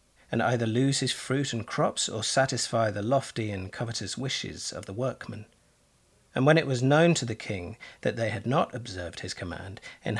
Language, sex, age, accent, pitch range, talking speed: English, male, 40-59, British, 110-130 Hz, 195 wpm